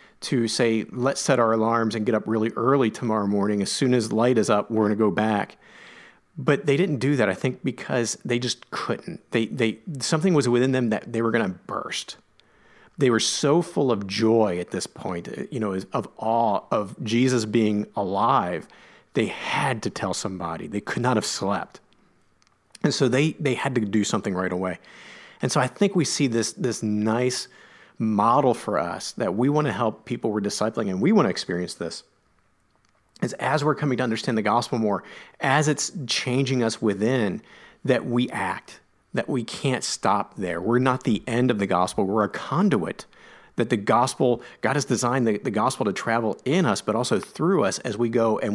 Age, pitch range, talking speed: 40-59, 110-130 Hz, 200 wpm